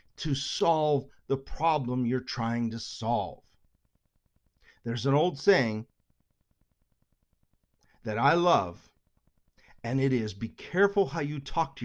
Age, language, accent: 40-59, English, American